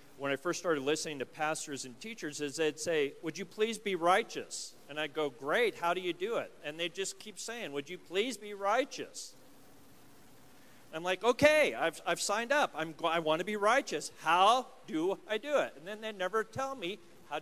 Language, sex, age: English, male, 40-59